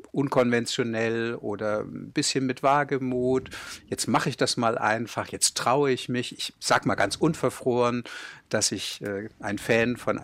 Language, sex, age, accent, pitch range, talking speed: German, male, 60-79, German, 115-135 Hz, 160 wpm